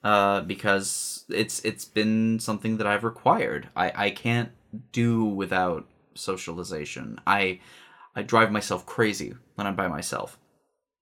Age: 20-39